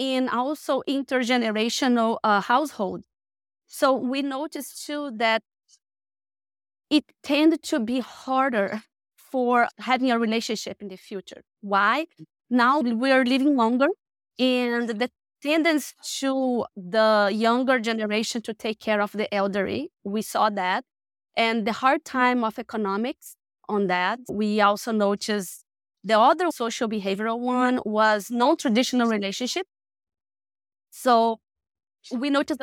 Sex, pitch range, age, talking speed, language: female, 210-265 Hz, 20-39, 120 wpm, English